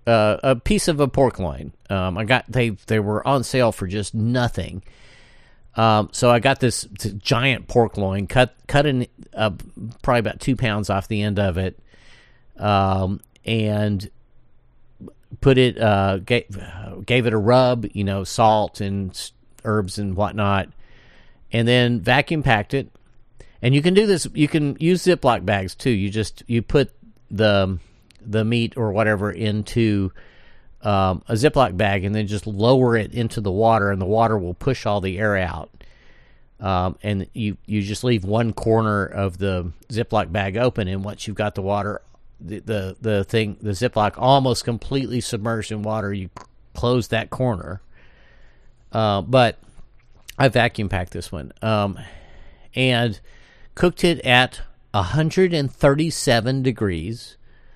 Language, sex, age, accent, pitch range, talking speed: English, male, 50-69, American, 100-125 Hz, 160 wpm